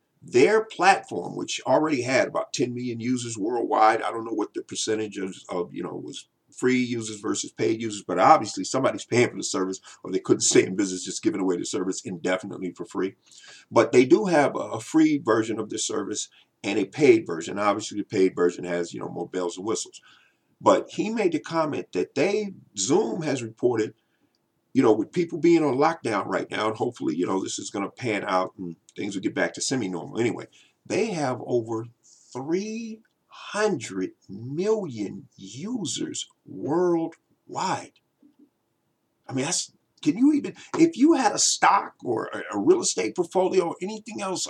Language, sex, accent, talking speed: English, male, American, 185 wpm